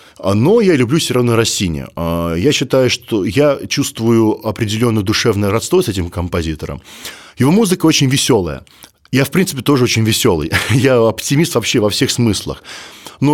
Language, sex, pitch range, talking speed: Russian, male, 100-140 Hz, 155 wpm